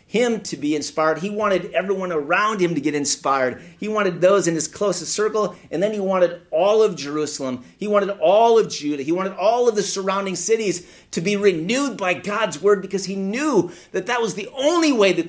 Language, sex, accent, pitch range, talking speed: English, male, American, 150-195 Hz, 210 wpm